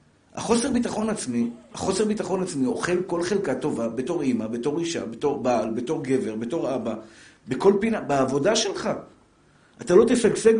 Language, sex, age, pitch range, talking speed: Hebrew, male, 50-69, 150-230 Hz, 155 wpm